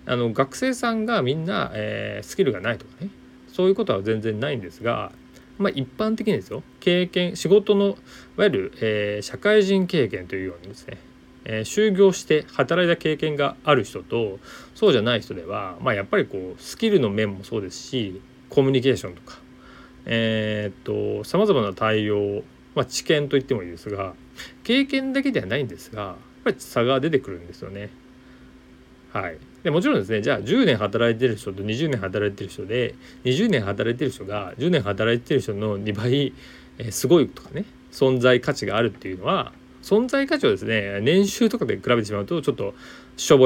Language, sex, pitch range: Japanese, male, 95-150 Hz